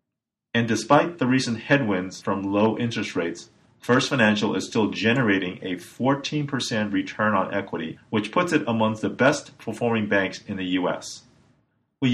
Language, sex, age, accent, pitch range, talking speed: English, male, 40-59, American, 105-135 Hz, 150 wpm